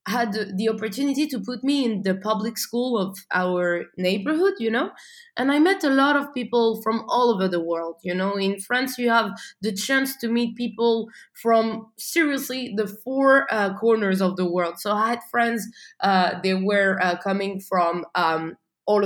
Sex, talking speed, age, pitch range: female, 185 wpm, 20-39, 195-260 Hz